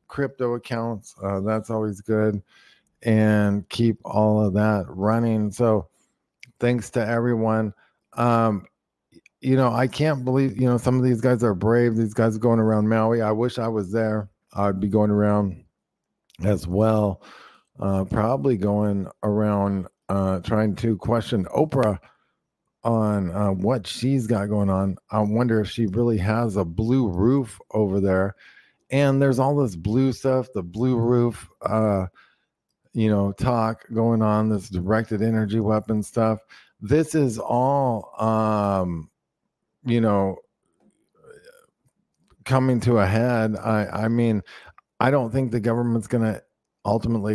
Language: English